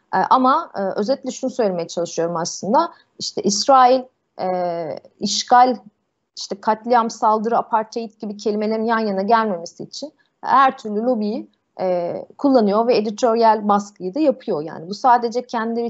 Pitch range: 180-235 Hz